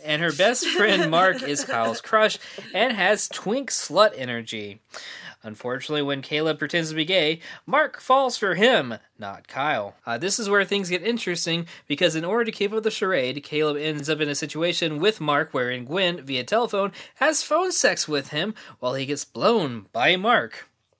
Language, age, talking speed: English, 20-39, 185 wpm